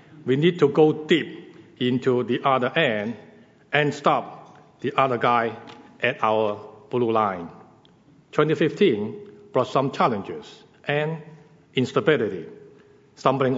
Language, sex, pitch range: English, male, 130-160 Hz